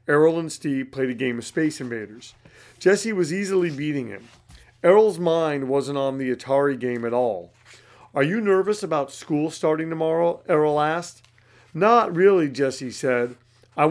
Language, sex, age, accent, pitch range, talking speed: English, male, 40-59, American, 120-175 Hz, 160 wpm